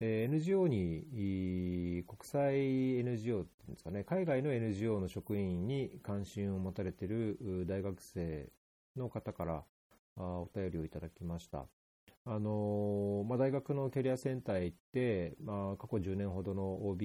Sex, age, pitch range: male, 40-59, 85-110 Hz